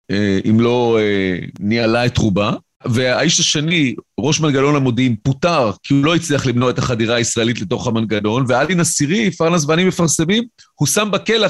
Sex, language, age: male, Hebrew, 40-59